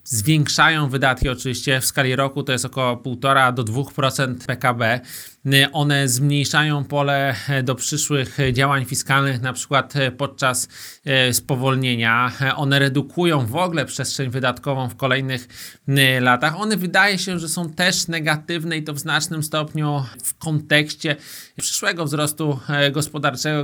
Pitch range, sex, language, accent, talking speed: 135-150 Hz, male, Polish, native, 125 wpm